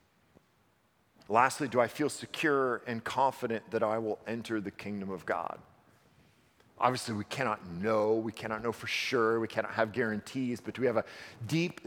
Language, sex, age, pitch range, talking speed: English, male, 40-59, 115-145 Hz, 170 wpm